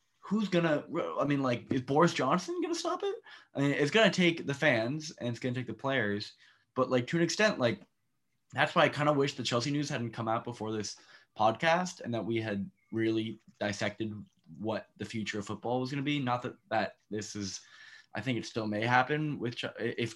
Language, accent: English, American